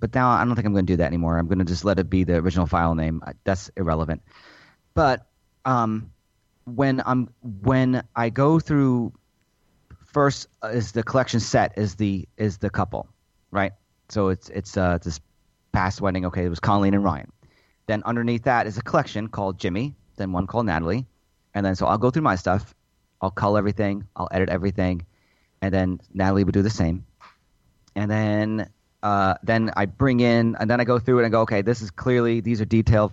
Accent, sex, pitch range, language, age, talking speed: American, male, 95-115 Hz, English, 30-49, 205 wpm